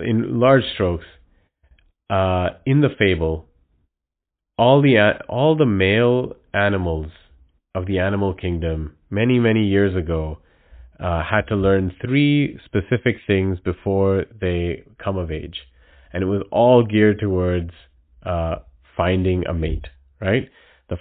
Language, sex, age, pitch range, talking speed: English, male, 30-49, 85-105 Hz, 130 wpm